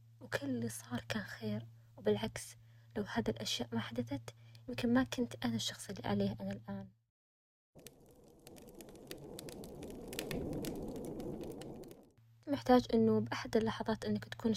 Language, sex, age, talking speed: Arabic, female, 20-39, 105 wpm